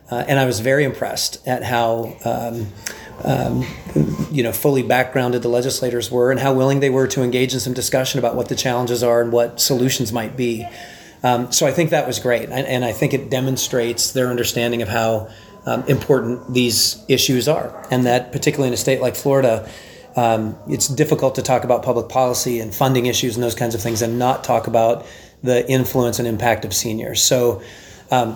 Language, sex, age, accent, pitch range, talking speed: English, male, 30-49, American, 120-130 Hz, 200 wpm